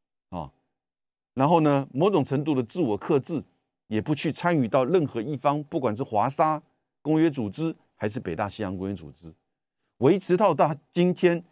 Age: 50-69